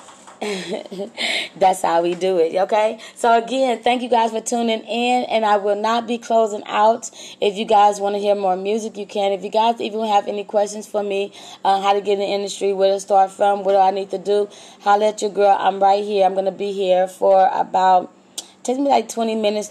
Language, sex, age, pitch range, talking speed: English, female, 20-39, 190-215 Hz, 225 wpm